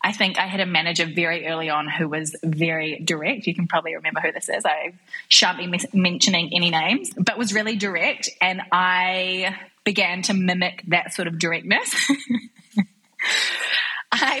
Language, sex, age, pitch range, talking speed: English, female, 20-39, 175-215 Hz, 165 wpm